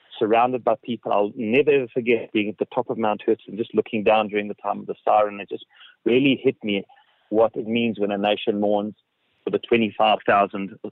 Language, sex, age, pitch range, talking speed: English, male, 30-49, 105-120 Hz, 215 wpm